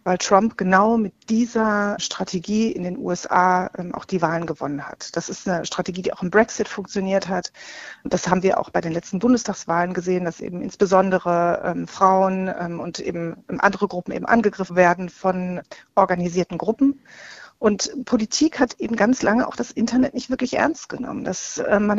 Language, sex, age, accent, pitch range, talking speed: German, female, 40-59, German, 190-235 Hz, 180 wpm